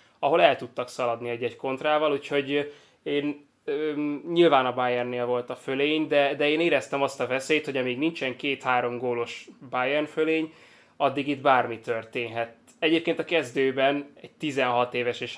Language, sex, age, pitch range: Hungarian, male, 20-39, 120-140 Hz